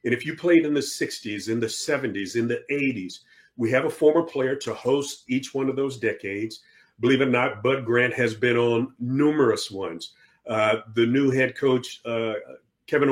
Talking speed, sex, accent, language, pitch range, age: 195 wpm, male, American, English, 120-150 Hz, 40-59